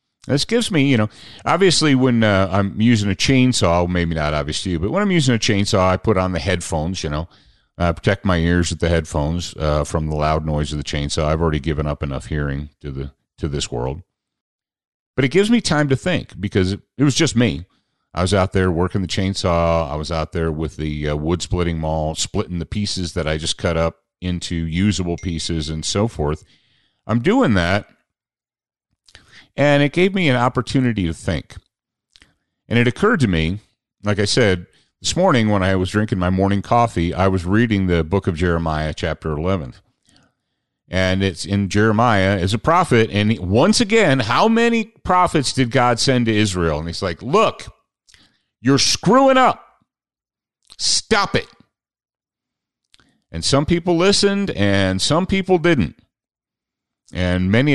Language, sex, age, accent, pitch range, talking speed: English, male, 40-59, American, 85-125 Hz, 180 wpm